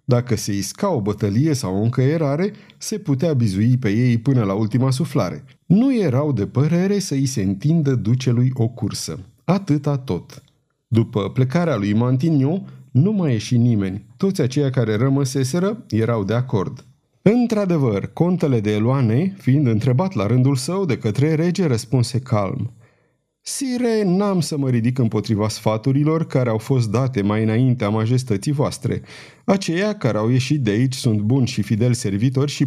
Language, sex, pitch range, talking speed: Romanian, male, 115-150 Hz, 160 wpm